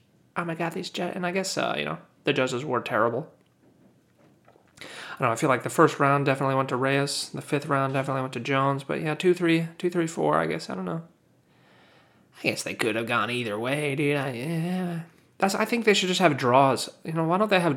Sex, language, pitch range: male, English, 130-185 Hz